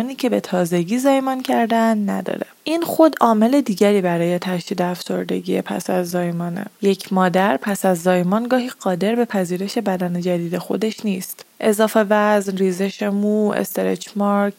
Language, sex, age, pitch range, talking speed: Persian, female, 20-39, 185-230 Hz, 135 wpm